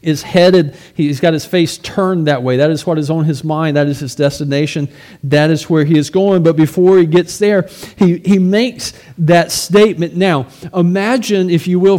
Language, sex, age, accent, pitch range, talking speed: English, male, 40-59, American, 150-195 Hz, 205 wpm